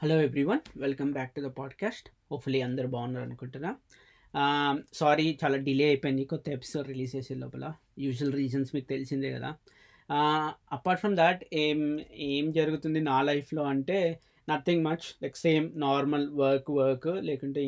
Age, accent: 20-39, native